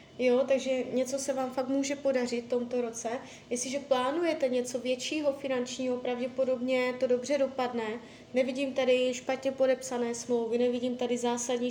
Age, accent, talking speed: 20-39, native, 145 wpm